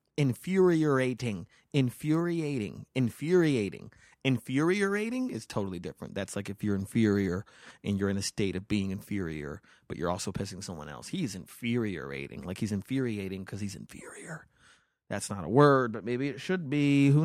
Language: English